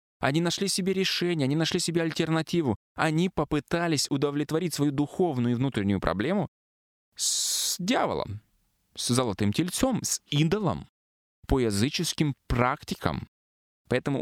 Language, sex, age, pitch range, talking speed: Russian, male, 20-39, 105-150 Hz, 115 wpm